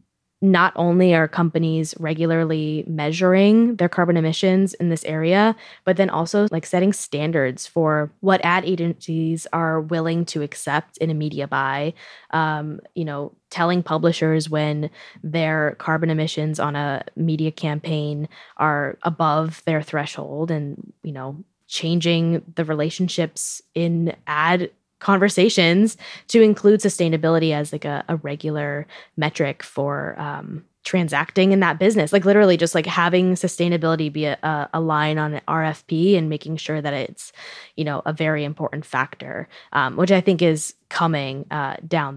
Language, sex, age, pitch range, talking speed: English, female, 20-39, 150-175 Hz, 145 wpm